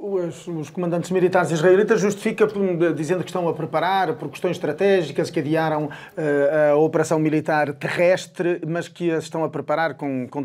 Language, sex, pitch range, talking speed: Portuguese, male, 150-190 Hz, 145 wpm